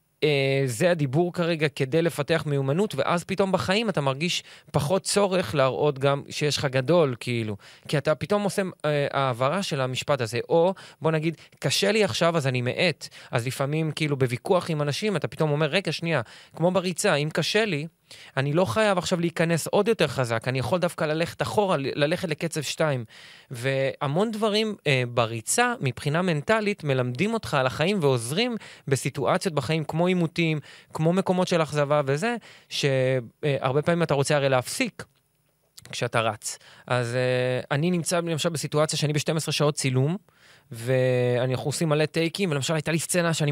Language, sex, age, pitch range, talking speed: Hebrew, male, 20-39, 130-170 Hz, 165 wpm